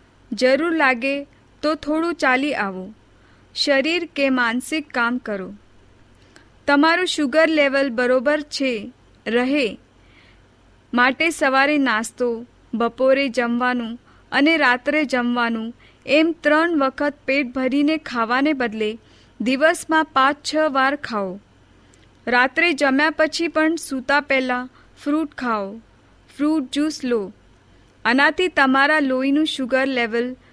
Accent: native